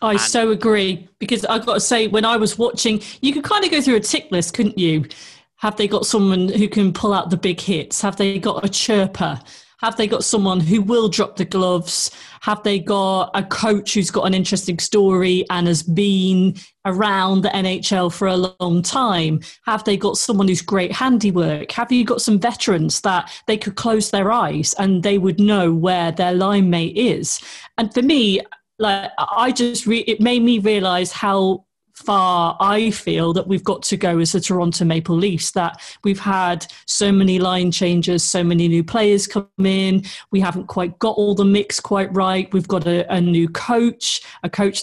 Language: English